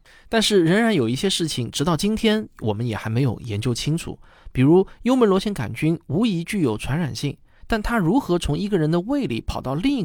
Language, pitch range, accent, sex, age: Chinese, 120-185 Hz, native, male, 20-39